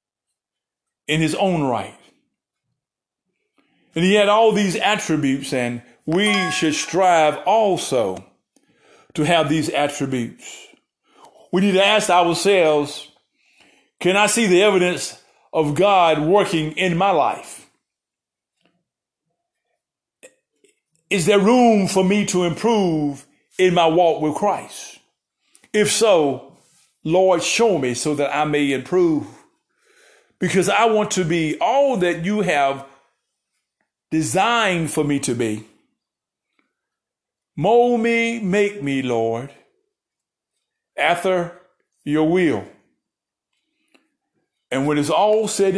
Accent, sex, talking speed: American, male, 110 wpm